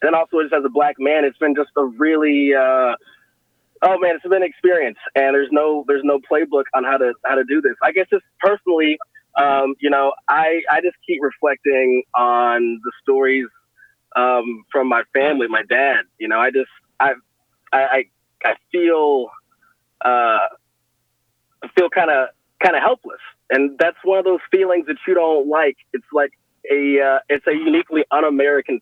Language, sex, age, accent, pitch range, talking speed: English, male, 20-39, American, 135-180 Hz, 180 wpm